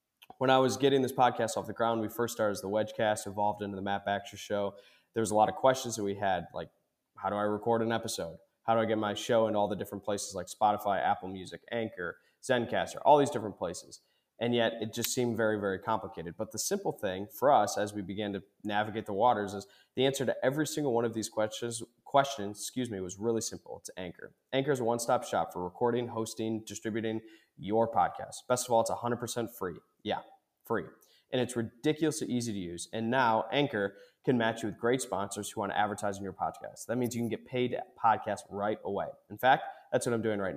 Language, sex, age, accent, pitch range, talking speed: English, male, 20-39, American, 105-120 Hz, 230 wpm